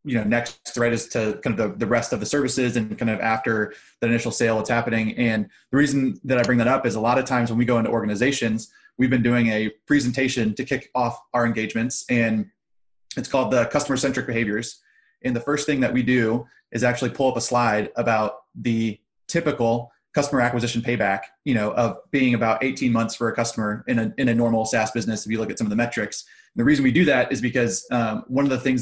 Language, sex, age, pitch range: English, male, 20-39, 115-130 Hz